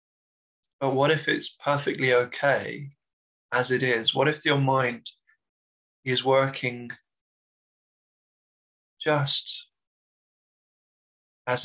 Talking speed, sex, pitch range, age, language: 90 wpm, male, 120-135 Hz, 20-39, English